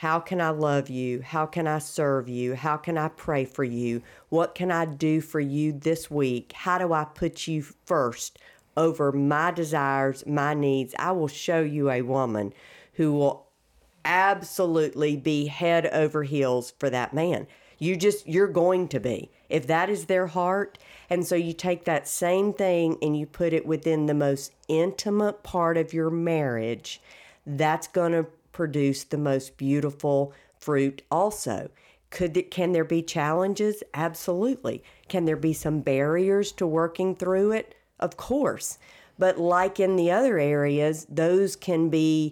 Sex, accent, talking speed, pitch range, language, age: female, American, 165 wpm, 145-175 Hz, English, 50-69